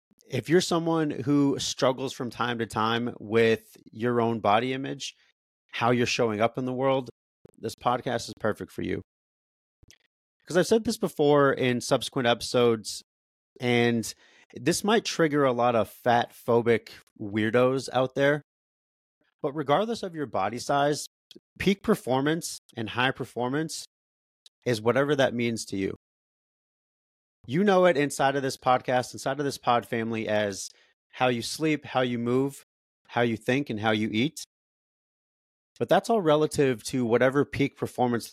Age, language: 30-49, English